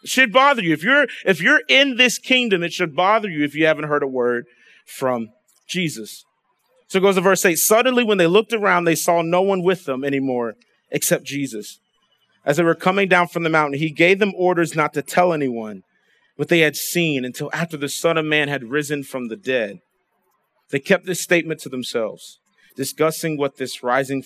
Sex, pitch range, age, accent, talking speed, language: male, 150-200 Hz, 30-49, American, 205 wpm, English